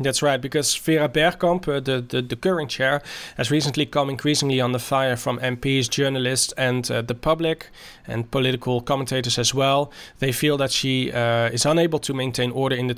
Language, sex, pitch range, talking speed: English, male, 120-140 Hz, 195 wpm